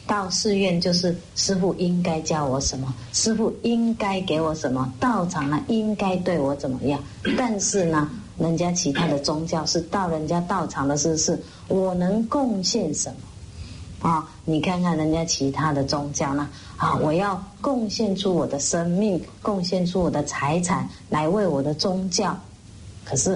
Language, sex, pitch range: English, female, 145-195 Hz